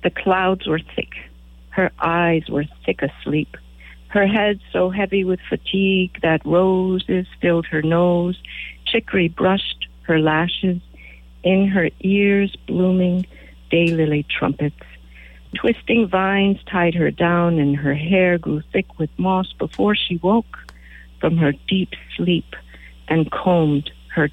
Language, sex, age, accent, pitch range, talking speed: English, female, 60-79, American, 140-180 Hz, 130 wpm